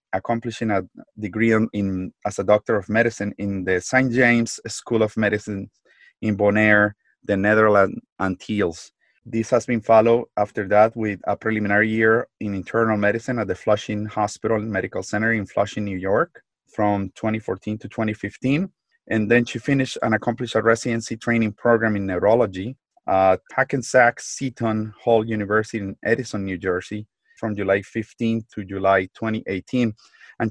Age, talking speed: 30-49, 155 wpm